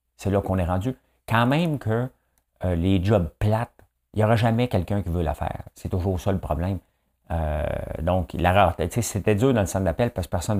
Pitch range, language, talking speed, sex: 85-115 Hz, French, 220 wpm, male